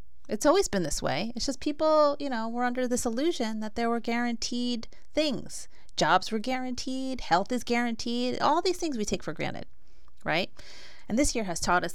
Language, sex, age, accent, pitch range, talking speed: English, female, 30-49, American, 140-225 Hz, 195 wpm